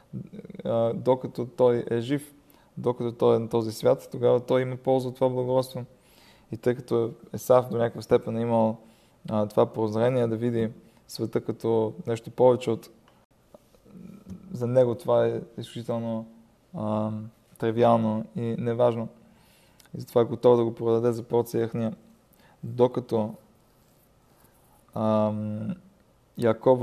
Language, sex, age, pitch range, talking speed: Bulgarian, male, 20-39, 115-125 Hz, 130 wpm